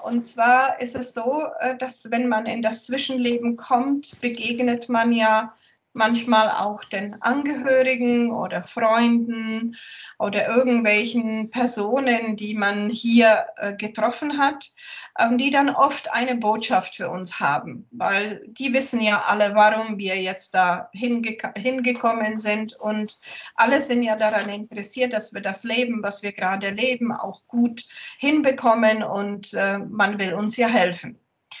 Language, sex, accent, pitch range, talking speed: German, female, German, 210-250 Hz, 135 wpm